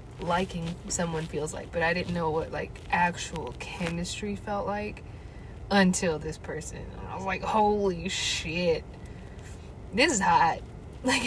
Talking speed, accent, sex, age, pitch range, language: 140 wpm, American, female, 20-39, 170-215 Hz, English